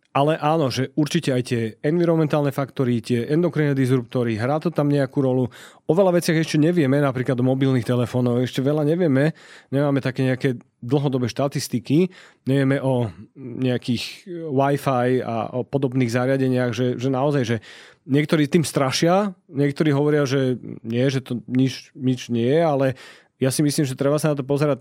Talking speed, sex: 165 wpm, male